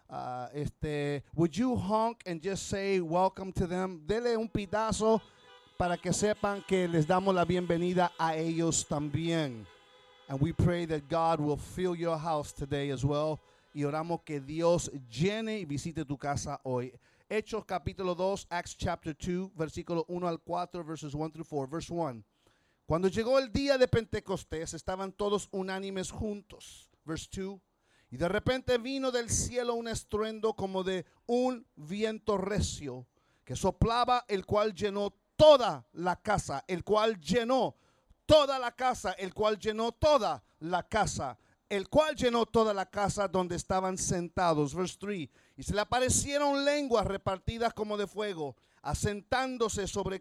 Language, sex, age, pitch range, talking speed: English, male, 40-59, 160-220 Hz, 155 wpm